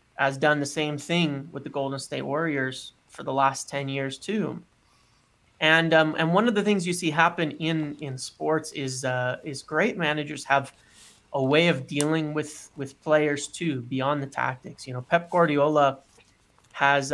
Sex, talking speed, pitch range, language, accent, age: male, 180 wpm, 130-155 Hz, English, American, 30-49